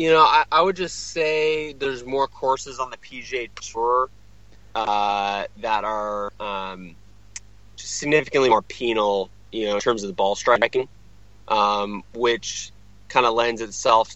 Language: English